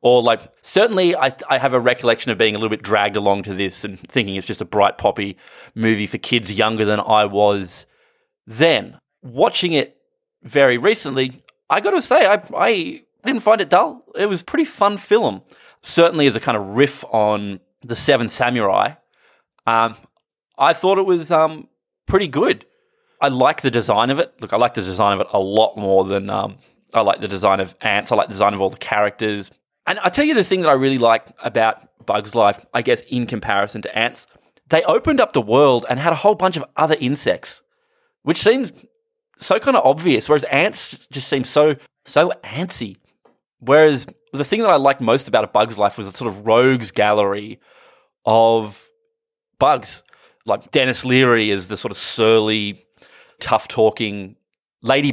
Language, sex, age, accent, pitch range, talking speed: English, male, 20-39, Australian, 105-165 Hz, 190 wpm